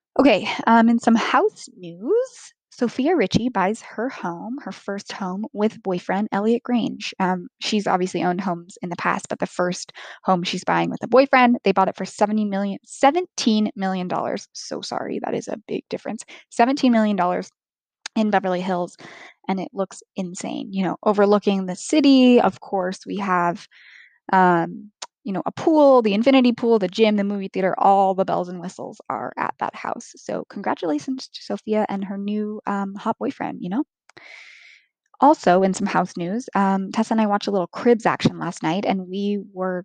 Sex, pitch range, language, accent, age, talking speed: female, 190-240 Hz, English, American, 10-29, 180 wpm